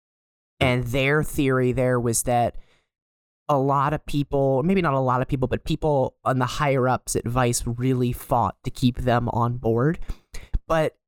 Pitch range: 125-155 Hz